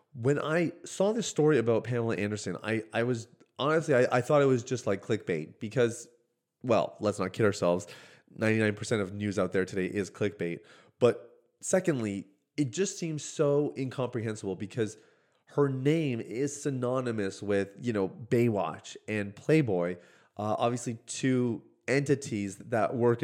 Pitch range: 100-130 Hz